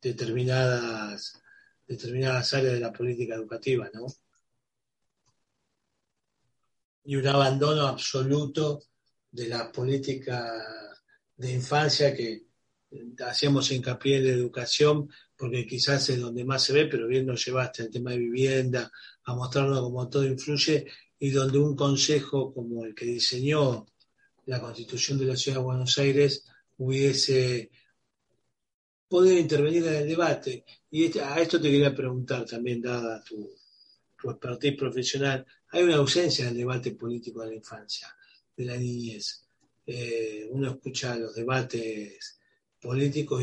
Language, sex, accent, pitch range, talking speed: Spanish, male, Argentinian, 120-145 Hz, 135 wpm